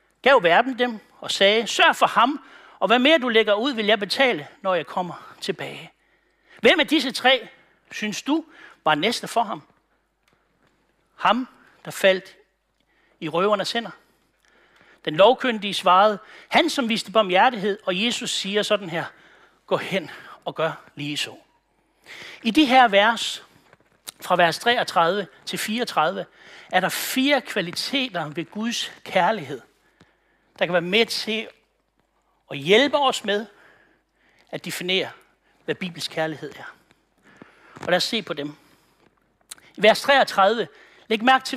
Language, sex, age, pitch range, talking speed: Danish, male, 60-79, 185-260 Hz, 145 wpm